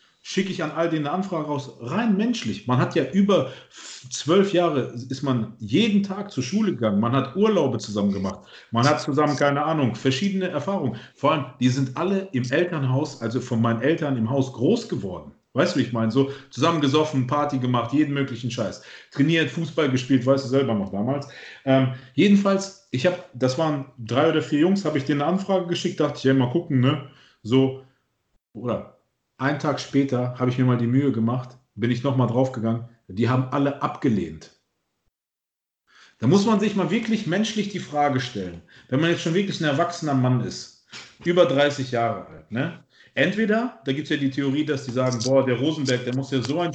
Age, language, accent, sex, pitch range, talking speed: 40-59, German, German, male, 130-170 Hz, 200 wpm